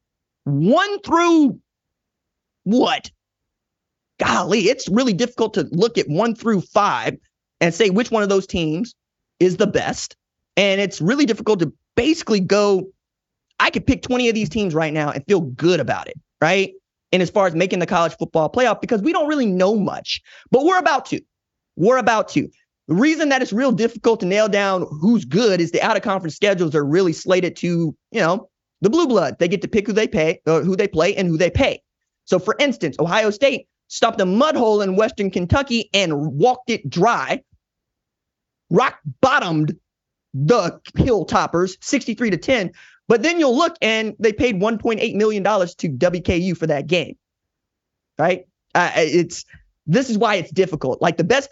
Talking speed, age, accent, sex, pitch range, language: 185 wpm, 20-39, American, male, 170-230 Hz, English